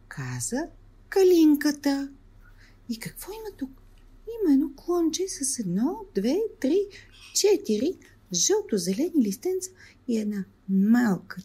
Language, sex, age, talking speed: Bulgarian, female, 40-59, 100 wpm